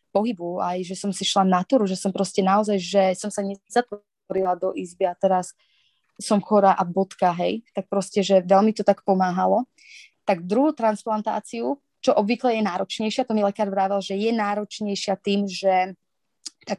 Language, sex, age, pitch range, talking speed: Slovak, female, 20-39, 195-235 Hz, 175 wpm